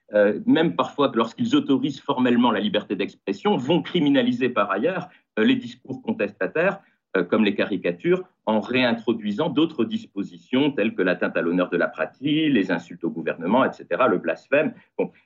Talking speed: 160 wpm